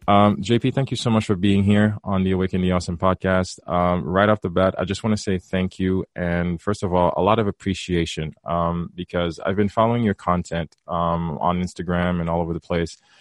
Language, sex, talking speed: English, male, 225 wpm